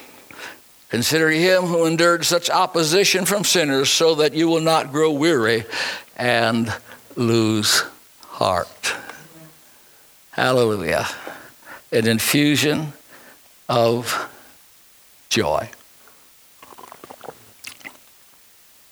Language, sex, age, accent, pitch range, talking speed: English, male, 60-79, American, 120-165 Hz, 75 wpm